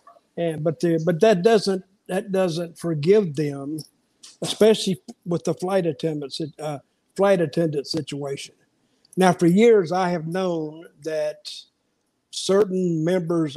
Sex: male